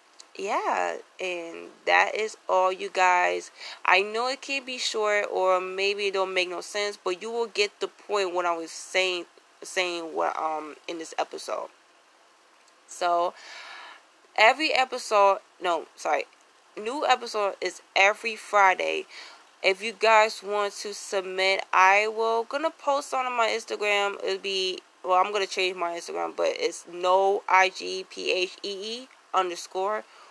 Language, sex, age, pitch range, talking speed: English, female, 20-39, 175-235 Hz, 150 wpm